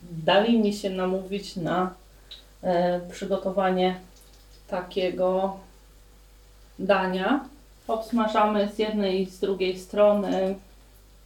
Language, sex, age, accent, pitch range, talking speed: Polish, female, 30-49, native, 185-210 Hz, 85 wpm